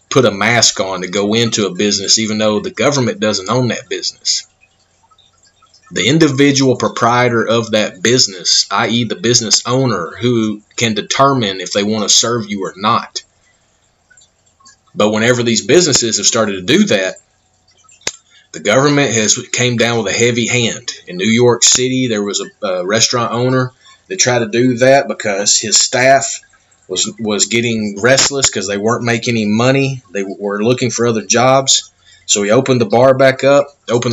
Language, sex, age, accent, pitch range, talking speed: English, male, 30-49, American, 110-130 Hz, 175 wpm